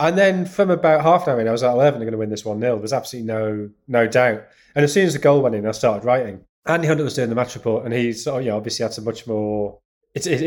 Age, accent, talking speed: 30-49, British, 315 wpm